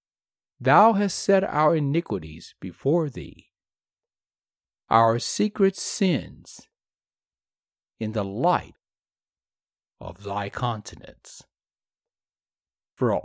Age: 60-79